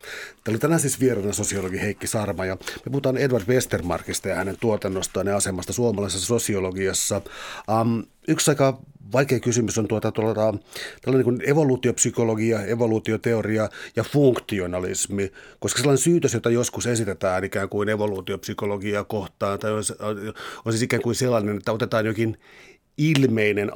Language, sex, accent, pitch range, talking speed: Finnish, male, native, 105-120 Hz, 135 wpm